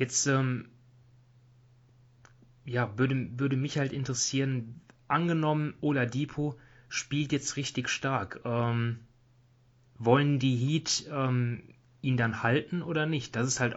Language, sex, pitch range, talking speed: German, male, 115-130 Hz, 120 wpm